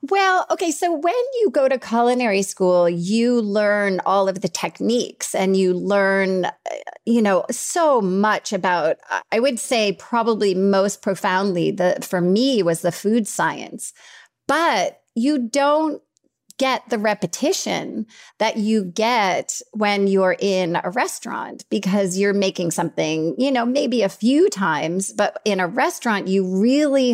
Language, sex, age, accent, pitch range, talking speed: English, female, 30-49, American, 180-235 Hz, 145 wpm